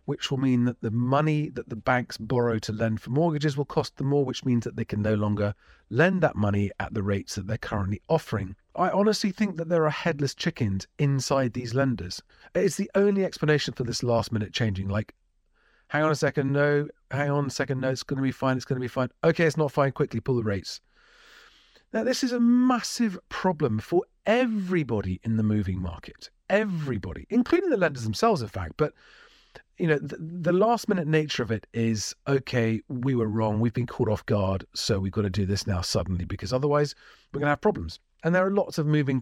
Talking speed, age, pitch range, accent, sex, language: 215 wpm, 40-59, 110-155 Hz, British, male, English